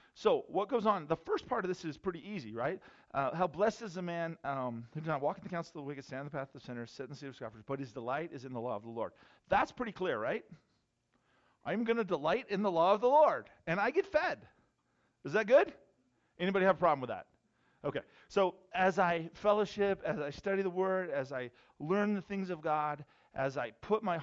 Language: English